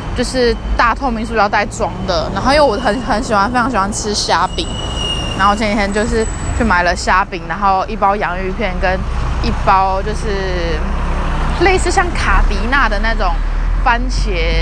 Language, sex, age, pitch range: Chinese, female, 20-39, 185-240 Hz